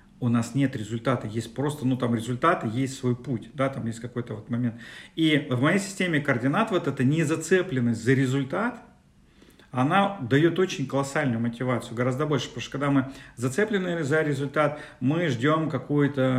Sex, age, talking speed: male, 40-59, 170 wpm